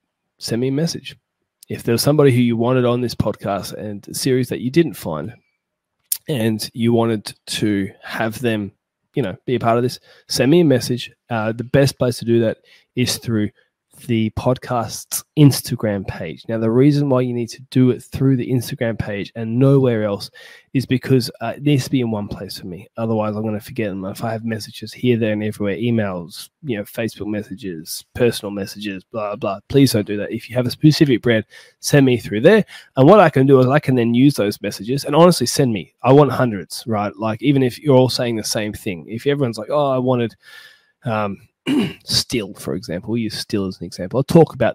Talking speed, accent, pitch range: 220 wpm, Australian, 105-130 Hz